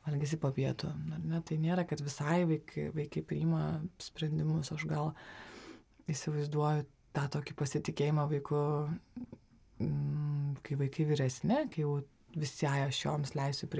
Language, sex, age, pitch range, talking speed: English, female, 20-39, 150-180 Hz, 115 wpm